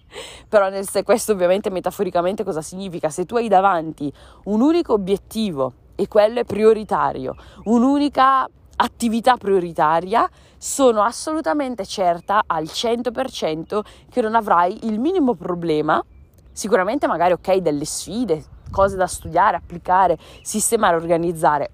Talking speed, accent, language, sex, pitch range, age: 115 wpm, native, Italian, female, 170-230 Hz, 20-39